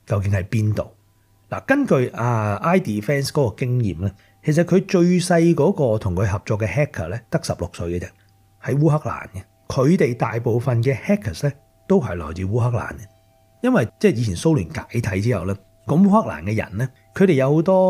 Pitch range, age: 100-150 Hz, 30-49